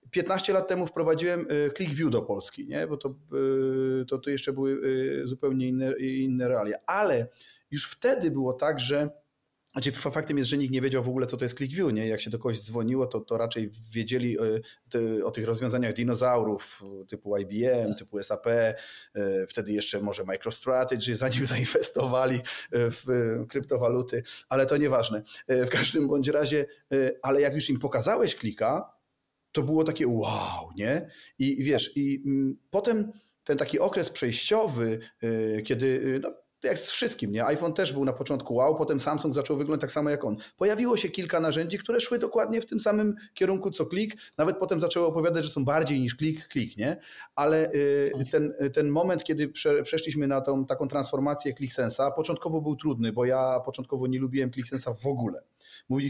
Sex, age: male, 40-59